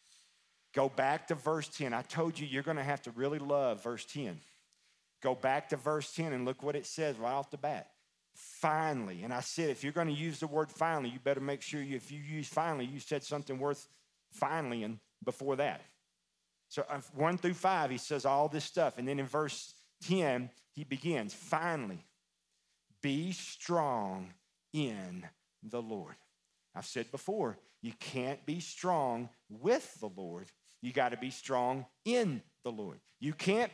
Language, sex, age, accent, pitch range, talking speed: English, male, 40-59, American, 135-200 Hz, 180 wpm